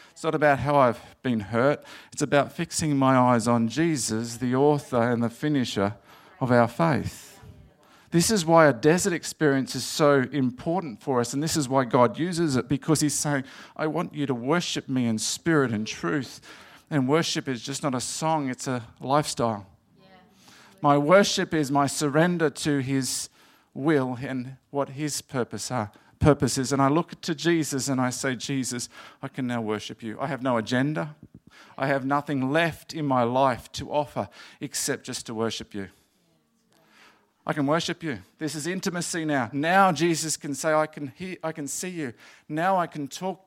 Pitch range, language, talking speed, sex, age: 130-165 Hz, English, 180 wpm, male, 50-69